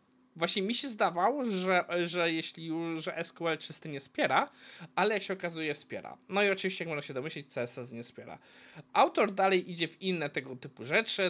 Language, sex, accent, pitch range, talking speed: Polish, male, native, 140-195 Hz, 190 wpm